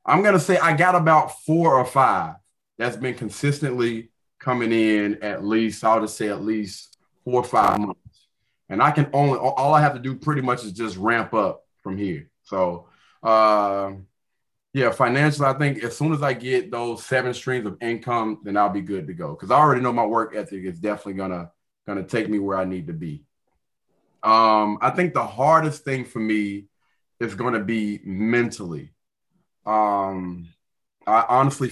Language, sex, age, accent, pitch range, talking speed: English, male, 30-49, American, 105-130 Hz, 190 wpm